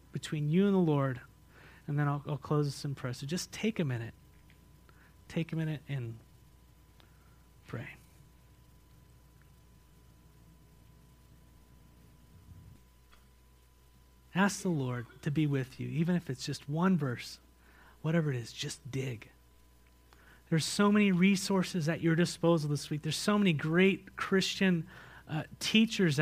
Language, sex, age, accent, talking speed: English, male, 30-49, American, 130 wpm